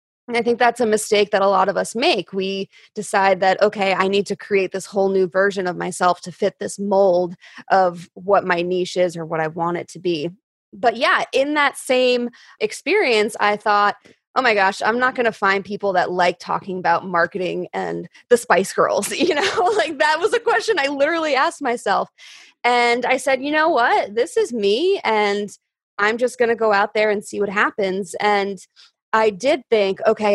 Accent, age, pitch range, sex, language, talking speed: American, 20-39, 185-235 Hz, female, English, 205 wpm